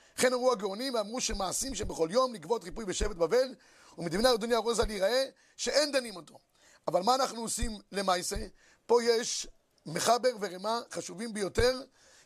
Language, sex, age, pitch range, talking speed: Hebrew, male, 30-49, 205-275 Hz, 140 wpm